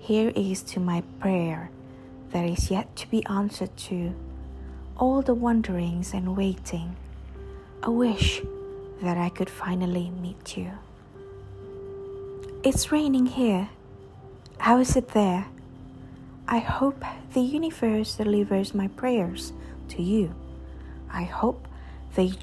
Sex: female